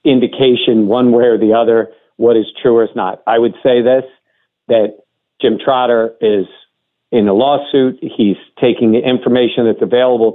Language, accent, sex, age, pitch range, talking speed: English, American, male, 50-69, 115-135 Hz, 170 wpm